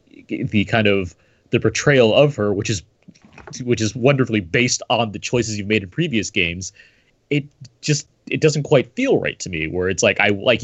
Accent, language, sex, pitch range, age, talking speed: American, English, male, 100-130 Hz, 30-49, 195 wpm